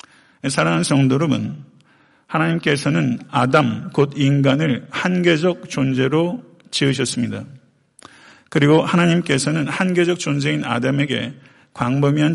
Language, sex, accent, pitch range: Korean, male, native, 130-160 Hz